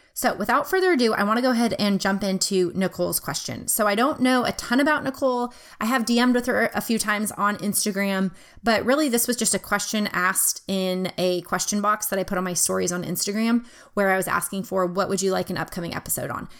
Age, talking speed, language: 20-39, 235 wpm, English